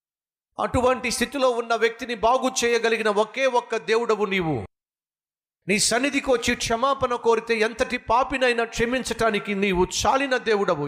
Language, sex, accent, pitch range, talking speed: Telugu, male, native, 145-215 Hz, 115 wpm